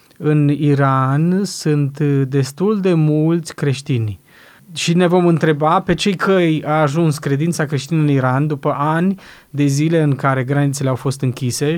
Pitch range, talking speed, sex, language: 130-155 Hz, 155 wpm, male, Romanian